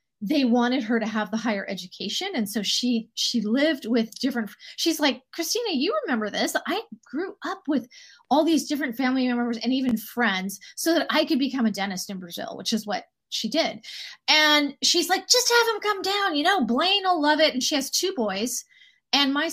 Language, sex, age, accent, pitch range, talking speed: English, female, 30-49, American, 225-305 Hz, 210 wpm